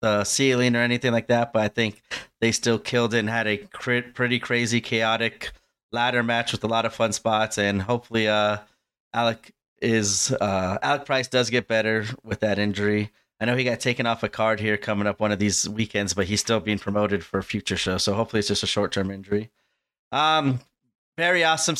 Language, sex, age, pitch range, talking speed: English, male, 30-49, 105-125 Hz, 210 wpm